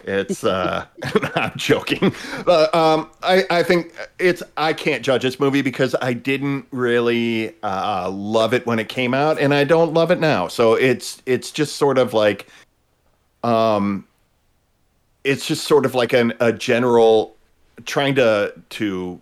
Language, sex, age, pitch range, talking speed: English, male, 40-59, 100-135 Hz, 155 wpm